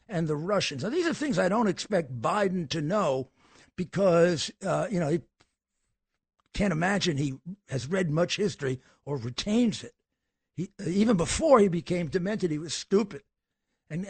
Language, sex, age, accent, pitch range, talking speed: English, male, 60-79, American, 155-205 Hz, 160 wpm